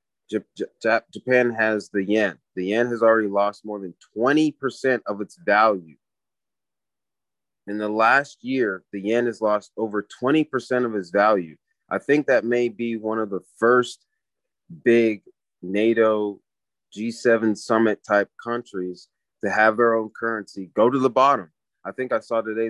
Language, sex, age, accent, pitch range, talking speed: English, male, 30-49, American, 100-115 Hz, 150 wpm